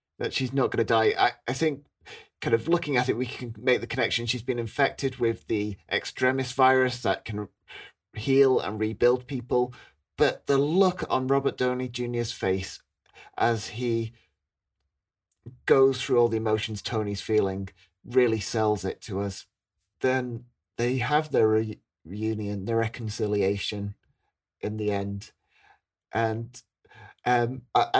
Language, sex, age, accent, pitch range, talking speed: English, male, 30-49, British, 115-150 Hz, 145 wpm